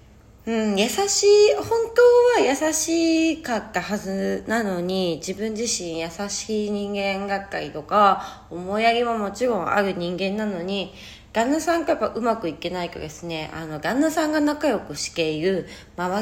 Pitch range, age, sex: 170-255 Hz, 20-39, female